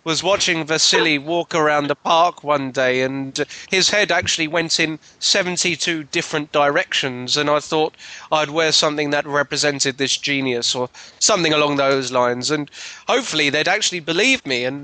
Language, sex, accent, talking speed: English, male, British, 160 wpm